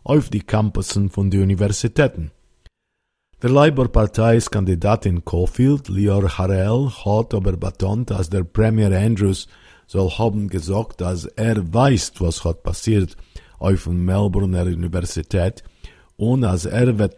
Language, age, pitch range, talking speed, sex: Hebrew, 50-69, 90-110 Hz, 130 wpm, male